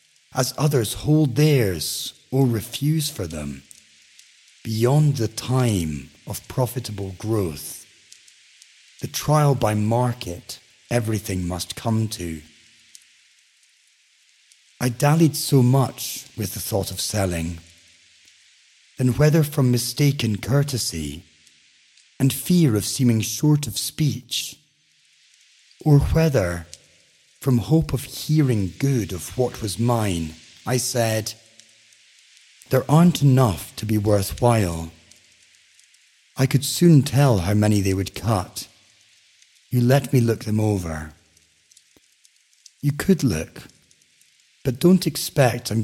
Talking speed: 110 wpm